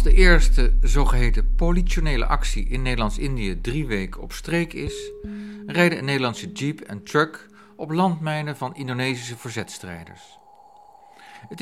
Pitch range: 115-170 Hz